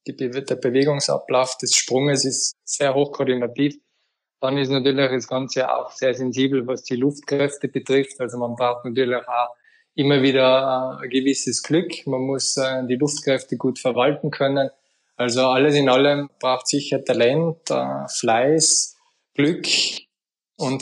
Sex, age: male, 20-39